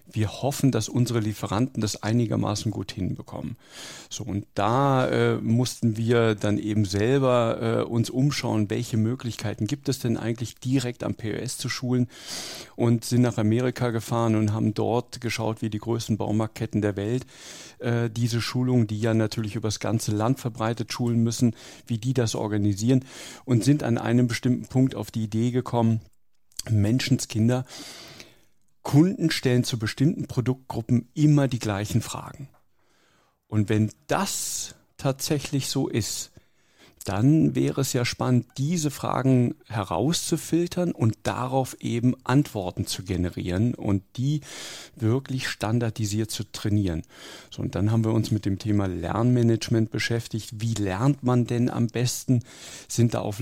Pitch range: 110-125 Hz